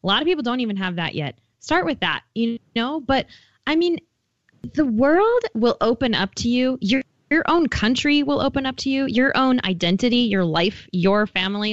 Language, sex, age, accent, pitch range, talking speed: English, female, 10-29, American, 190-275 Hz, 205 wpm